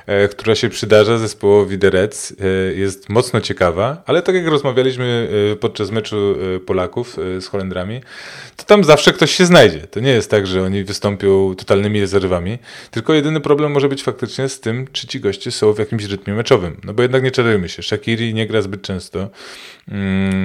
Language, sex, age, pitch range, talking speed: Polish, male, 20-39, 100-125 Hz, 175 wpm